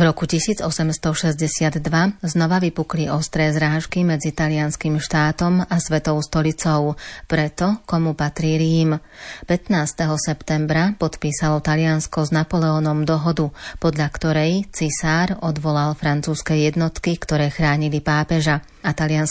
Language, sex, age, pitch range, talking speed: Slovak, female, 30-49, 150-165 Hz, 105 wpm